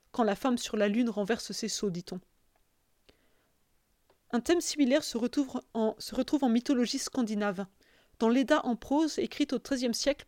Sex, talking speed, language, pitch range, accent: female, 170 wpm, English, 220-270 Hz, French